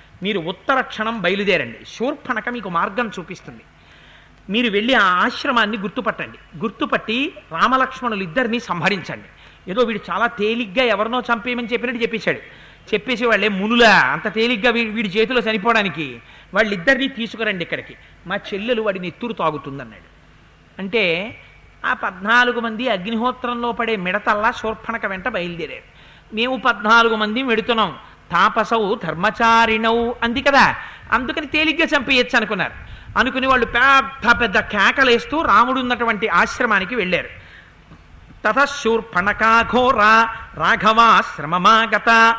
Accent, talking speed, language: native, 105 wpm, Telugu